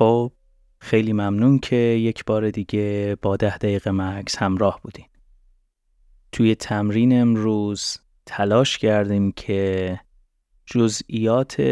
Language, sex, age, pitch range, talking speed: Persian, male, 30-49, 95-115 Hz, 95 wpm